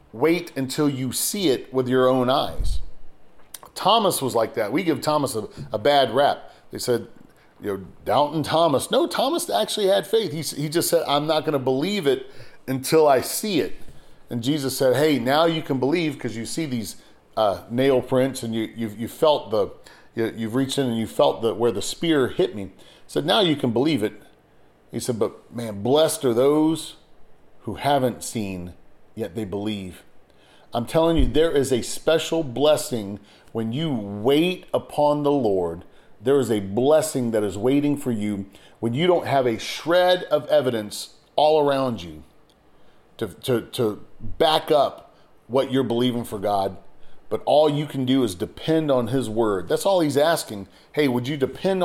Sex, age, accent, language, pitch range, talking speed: male, 40-59, American, English, 115-150 Hz, 185 wpm